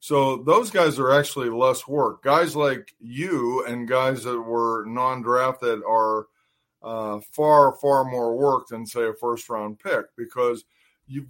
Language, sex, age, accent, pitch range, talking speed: English, male, 50-69, American, 115-135 Hz, 150 wpm